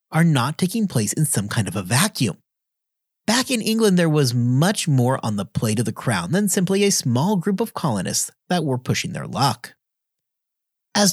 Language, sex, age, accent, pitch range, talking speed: English, male, 30-49, American, 145-225 Hz, 195 wpm